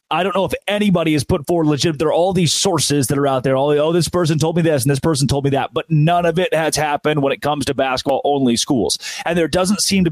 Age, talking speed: 30-49, 290 wpm